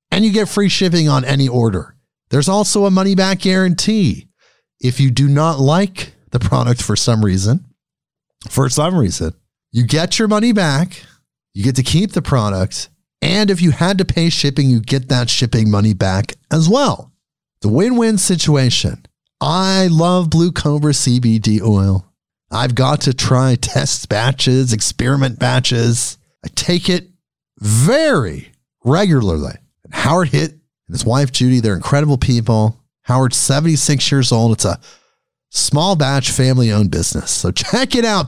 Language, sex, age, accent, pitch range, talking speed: English, male, 50-69, American, 120-180 Hz, 155 wpm